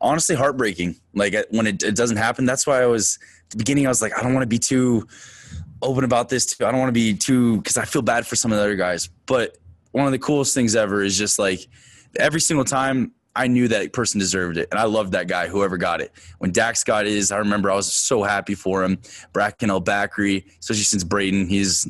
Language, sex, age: English, male, 20-39